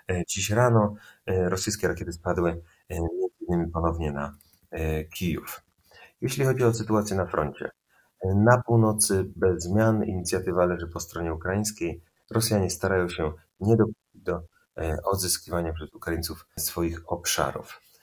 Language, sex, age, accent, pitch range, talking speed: Polish, male, 30-49, native, 80-100 Hz, 130 wpm